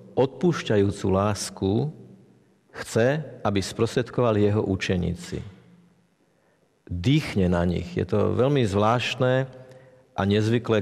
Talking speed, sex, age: 90 wpm, male, 50-69